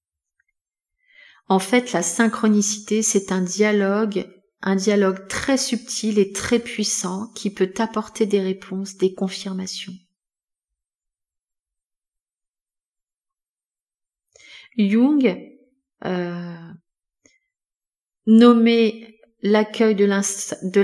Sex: female